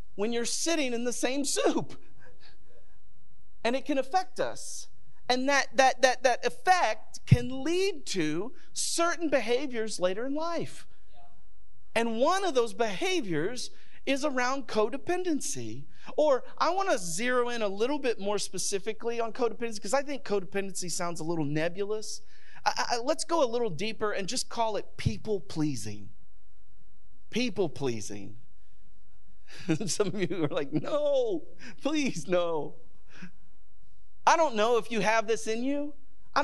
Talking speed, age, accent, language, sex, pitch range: 145 wpm, 40-59, American, English, male, 205-295 Hz